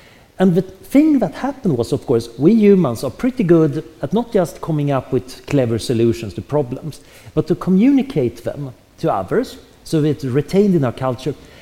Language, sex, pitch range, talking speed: English, male, 120-175 Hz, 180 wpm